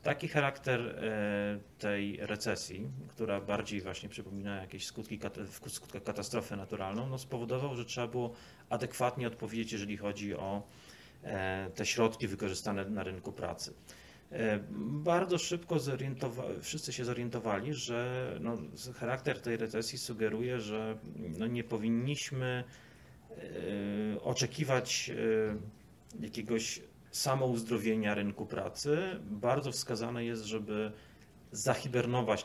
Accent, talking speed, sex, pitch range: native, 105 wpm, male, 105-125 Hz